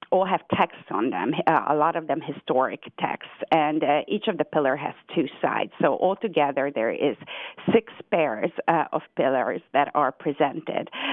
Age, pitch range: 40-59, 140-175 Hz